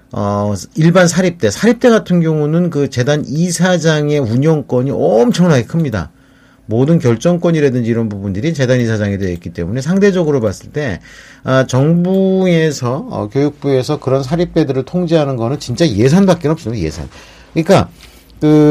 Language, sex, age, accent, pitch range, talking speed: English, male, 40-59, Korean, 110-155 Hz, 120 wpm